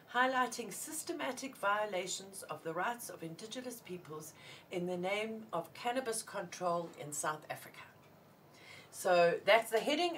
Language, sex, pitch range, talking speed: English, female, 175-230 Hz, 130 wpm